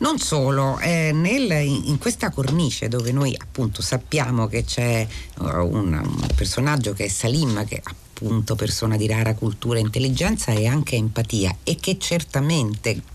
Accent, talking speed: native, 145 wpm